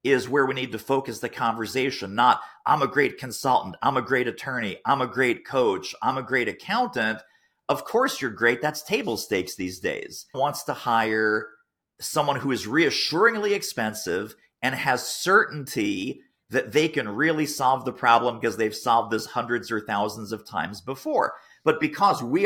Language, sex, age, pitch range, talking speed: English, male, 40-59, 120-160 Hz, 175 wpm